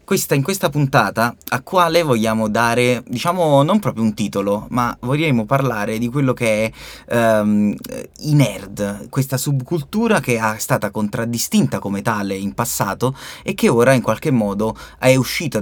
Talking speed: 160 wpm